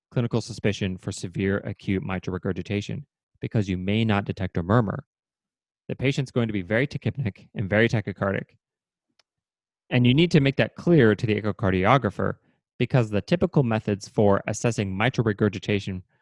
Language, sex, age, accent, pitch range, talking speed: English, male, 20-39, American, 100-130 Hz, 155 wpm